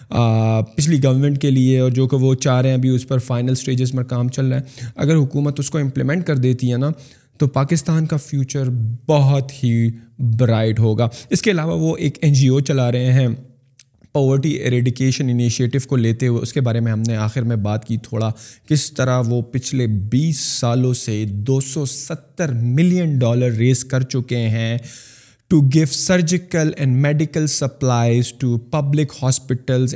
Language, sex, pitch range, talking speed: Urdu, male, 120-140 Hz, 180 wpm